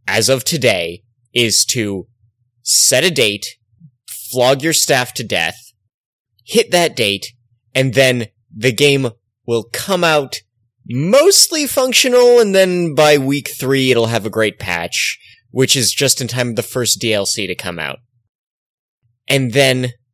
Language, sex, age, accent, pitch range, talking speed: English, male, 20-39, American, 110-140 Hz, 145 wpm